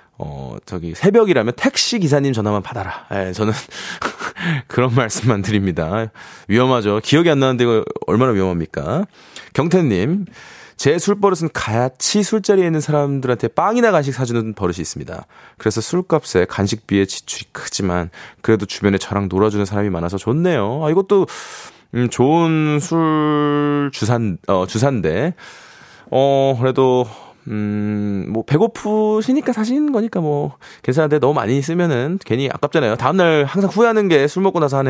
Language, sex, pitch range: Korean, male, 105-175 Hz